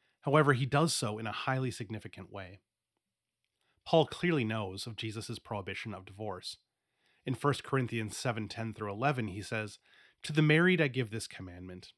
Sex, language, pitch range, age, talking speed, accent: male, English, 100-130 Hz, 30-49, 165 wpm, American